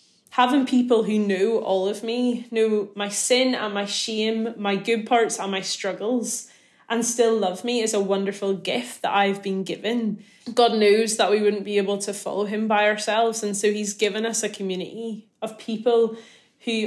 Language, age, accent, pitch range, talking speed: English, 20-39, British, 200-230 Hz, 190 wpm